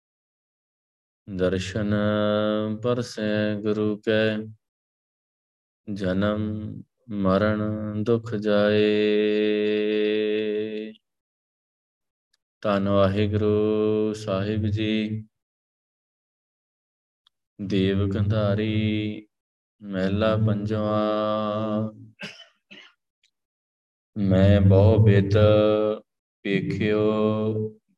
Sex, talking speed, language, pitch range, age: male, 45 wpm, Punjabi, 100-110 Hz, 20-39